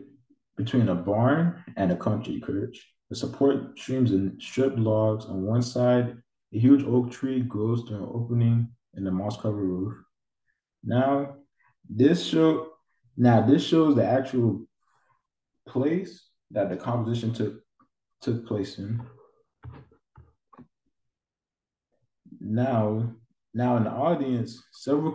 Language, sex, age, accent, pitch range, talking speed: English, male, 20-39, American, 110-130 Hz, 120 wpm